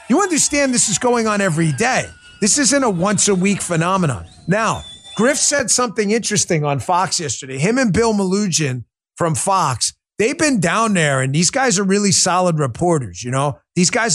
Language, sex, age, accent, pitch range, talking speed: English, male, 30-49, American, 160-245 Hz, 185 wpm